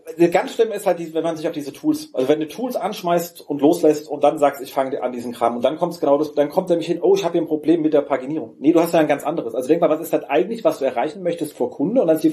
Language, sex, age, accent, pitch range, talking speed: German, male, 40-59, German, 150-185 Hz, 335 wpm